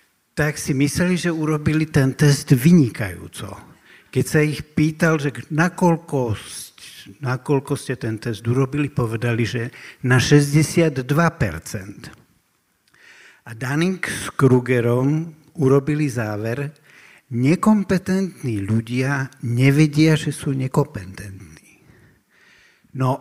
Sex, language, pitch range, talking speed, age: male, Slovak, 120-150 Hz, 90 wpm, 60-79